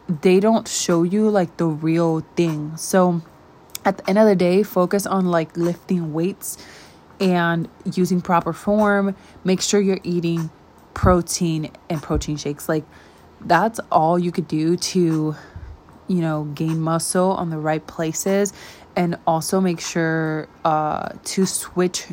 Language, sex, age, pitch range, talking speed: English, female, 20-39, 160-190 Hz, 145 wpm